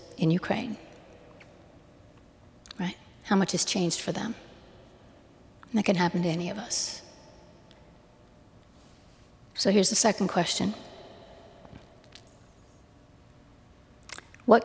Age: 50-69